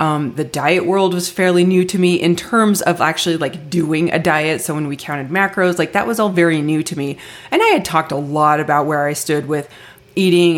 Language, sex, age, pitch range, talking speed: English, female, 20-39, 150-190 Hz, 240 wpm